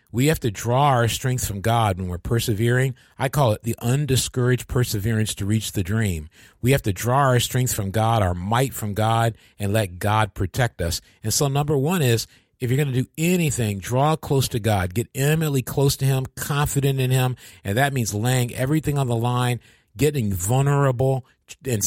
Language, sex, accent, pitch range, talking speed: English, male, American, 105-135 Hz, 200 wpm